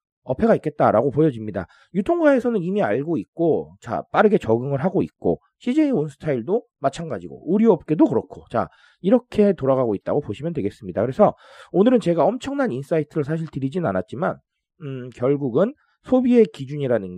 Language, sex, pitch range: Korean, male, 110-185 Hz